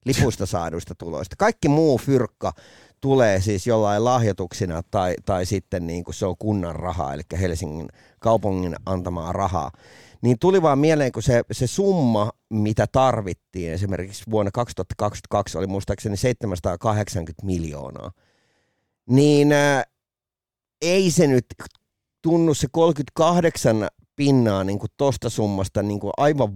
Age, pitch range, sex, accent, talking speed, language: 30-49, 95-130 Hz, male, native, 120 wpm, Finnish